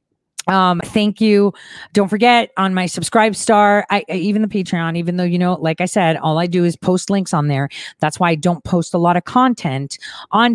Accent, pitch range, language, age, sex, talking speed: American, 155-195 Hz, English, 30-49, female, 220 wpm